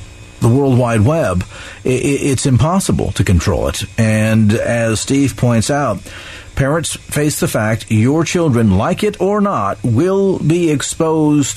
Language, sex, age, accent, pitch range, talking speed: English, male, 50-69, American, 110-150 Hz, 140 wpm